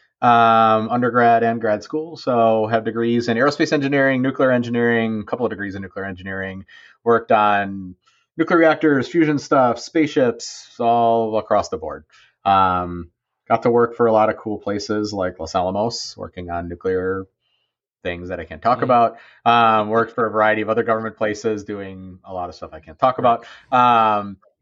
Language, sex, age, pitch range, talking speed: English, male, 30-49, 95-120 Hz, 175 wpm